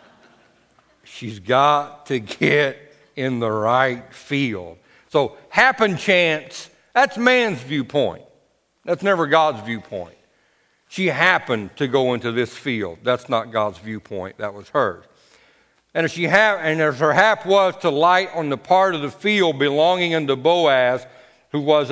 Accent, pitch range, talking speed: American, 115-150 Hz, 140 wpm